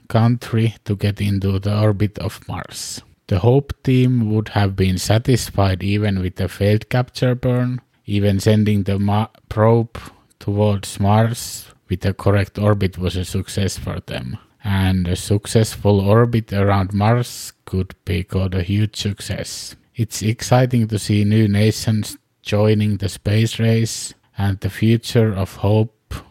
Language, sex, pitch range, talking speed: English, male, 100-120 Hz, 145 wpm